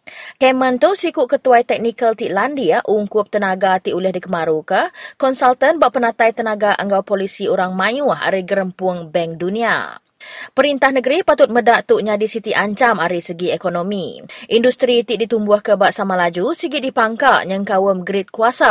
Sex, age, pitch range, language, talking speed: female, 20-39, 190-255 Hz, English, 150 wpm